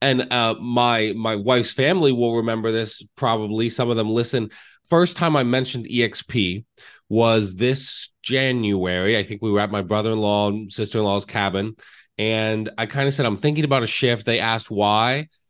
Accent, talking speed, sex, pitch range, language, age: American, 175 wpm, male, 110-135 Hz, English, 30-49